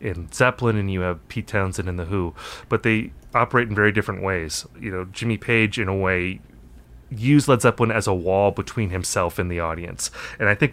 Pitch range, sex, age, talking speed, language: 95-120 Hz, male, 30-49, 215 wpm, English